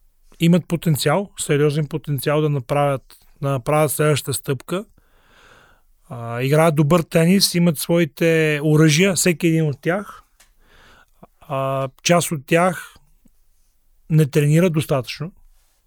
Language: Bulgarian